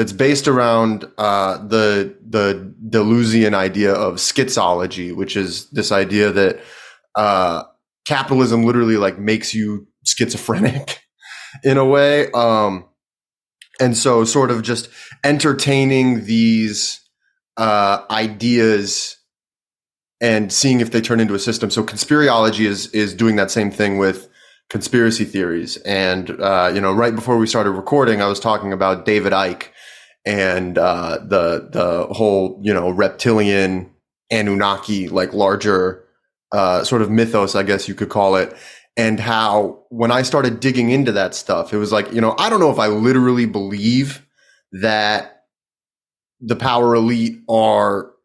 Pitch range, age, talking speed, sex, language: 100-120 Hz, 30-49, 145 wpm, male, English